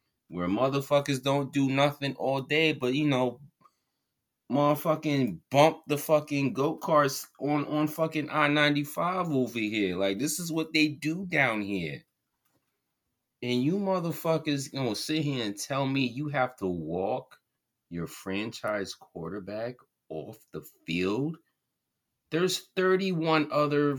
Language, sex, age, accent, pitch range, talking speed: English, male, 30-49, American, 95-150 Hz, 135 wpm